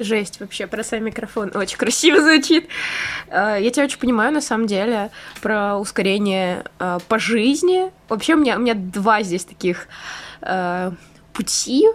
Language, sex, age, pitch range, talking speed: Russian, female, 20-39, 200-250 Hz, 155 wpm